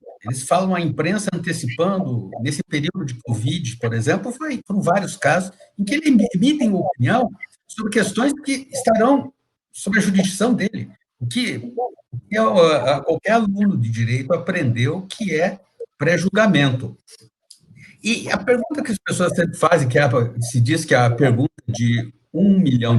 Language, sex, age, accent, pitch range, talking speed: Portuguese, male, 60-79, Brazilian, 125-205 Hz, 145 wpm